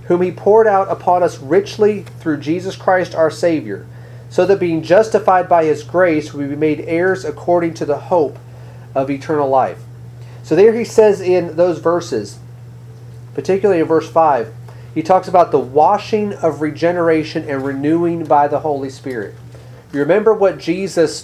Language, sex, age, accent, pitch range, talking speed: English, male, 30-49, American, 145-175 Hz, 165 wpm